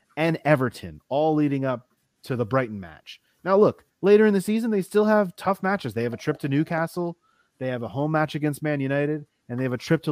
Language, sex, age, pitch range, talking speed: English, male, 30-49, 120-155 Hz, 235 wpm